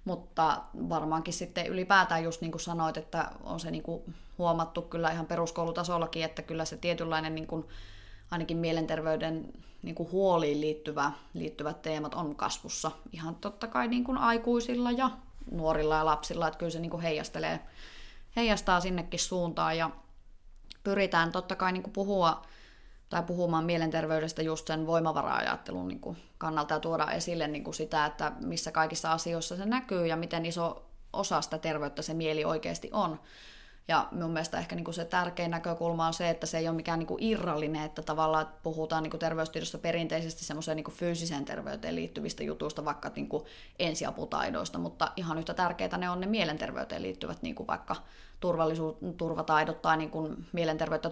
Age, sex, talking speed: 20-39, female, 145 wpm